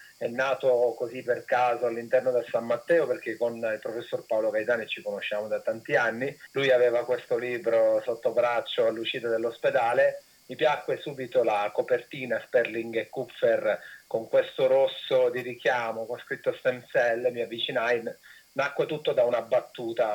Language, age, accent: Italian, 30-49, native